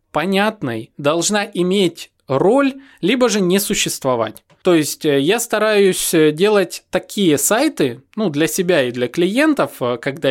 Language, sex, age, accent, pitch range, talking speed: Russian, male, 20-39, native, 140-205 Hz, 130 wpm